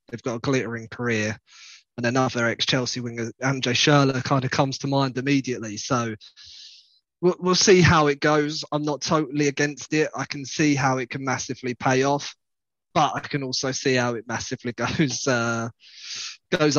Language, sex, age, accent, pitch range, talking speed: English, male, 20-39, British, 125-145 Hz, 175 wpm